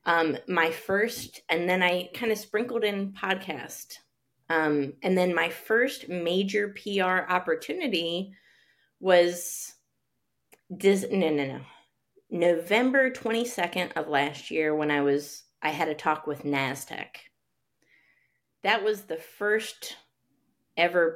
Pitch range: 155-205 Hz